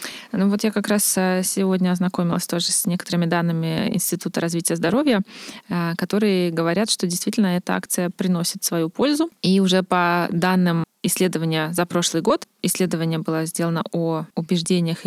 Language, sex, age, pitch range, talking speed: English, female, 20-39, 175-210 Hz, 145 wpm